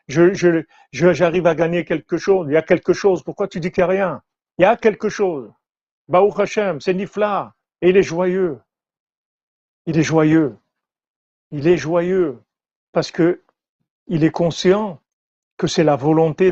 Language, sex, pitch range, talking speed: French, male, 145-175 Hz, 175 wpm